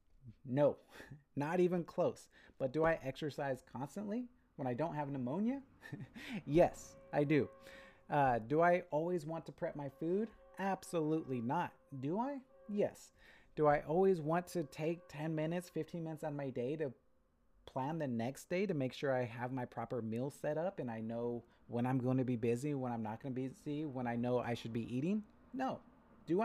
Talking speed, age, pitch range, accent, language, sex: 190 wpm, 30-49, 130-175 Hz, American, English, male